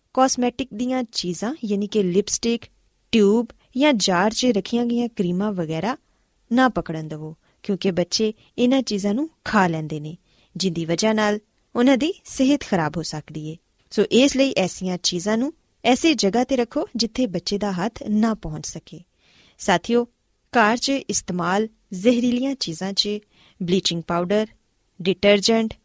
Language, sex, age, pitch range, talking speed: Punjabi, female, 20-39, 185-255 Hz, 135 wpm